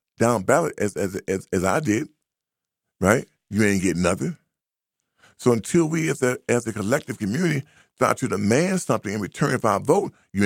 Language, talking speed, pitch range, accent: English, 185 wpm, 100-150 Hz, American